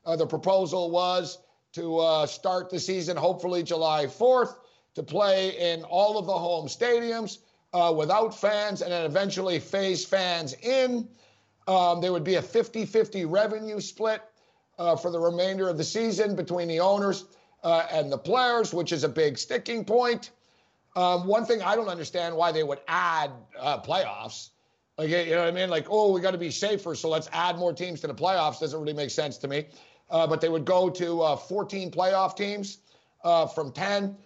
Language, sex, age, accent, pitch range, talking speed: English, male, 50-69, American, 165-195 Hz, 190 wpm